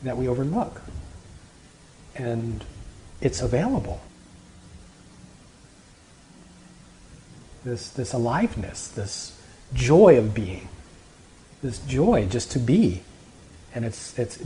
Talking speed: 85 wpm